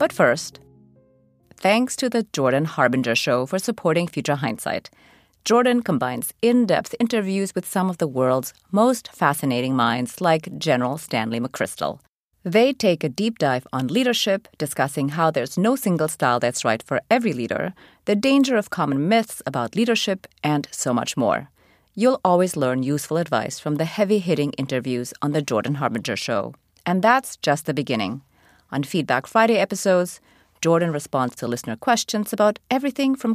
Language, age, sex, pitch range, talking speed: English, 30-49, female, 130-215 Hz, 160 wpm